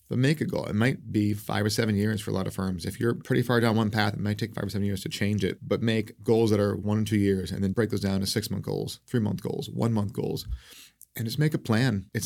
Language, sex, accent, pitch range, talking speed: English, male, American, 95-120 Hz, 310 wpm